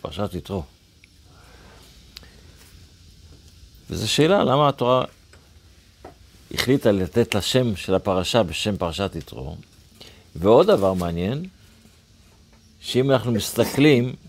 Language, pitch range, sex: Hebrew, 90-125 Hz, male